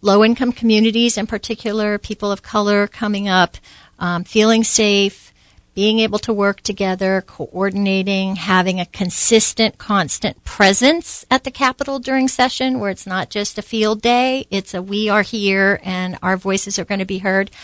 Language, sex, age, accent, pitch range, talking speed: English, female, 50-69, American, 185-225 Hz, 165 wpm